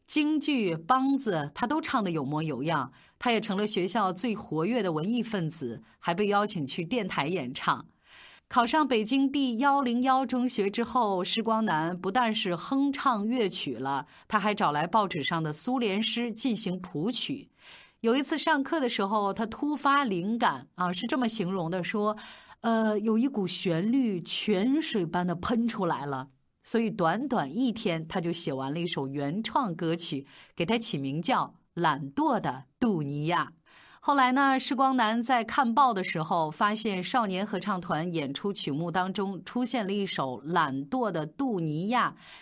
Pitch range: 170-250 Hz